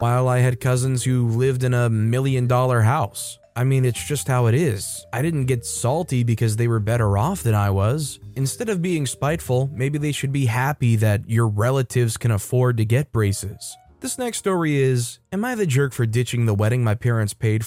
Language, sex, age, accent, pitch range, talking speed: English, male, 20-39, American, 110-140 Hz, 205 wpm